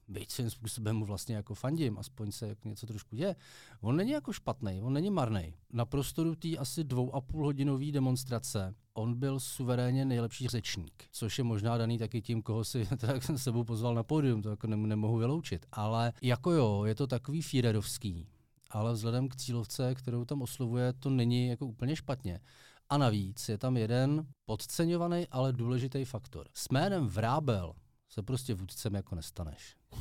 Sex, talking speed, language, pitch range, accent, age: male, 175 wpm, Czech, 110-130 Hz, native, 40-59